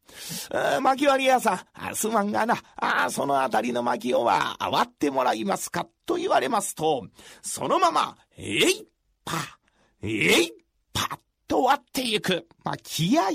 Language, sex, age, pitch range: Japanese, male, 40-59, 225-335 Hz